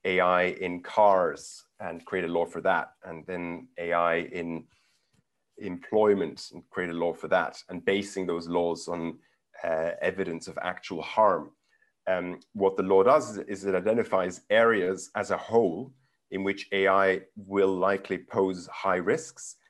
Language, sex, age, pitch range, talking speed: English, male, 30-49, 90-100 Hz, 150 wpm